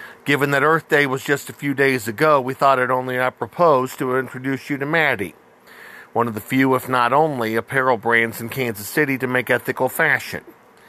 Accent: American